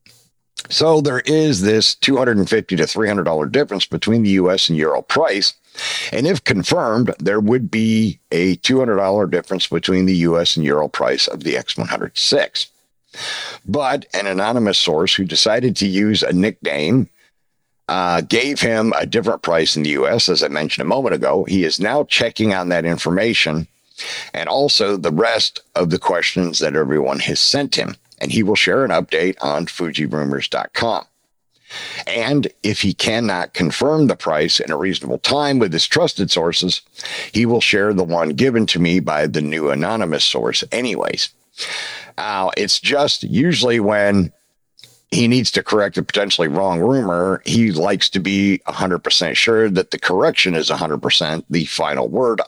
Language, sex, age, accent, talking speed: English, male, 50-69, American, 160 wpm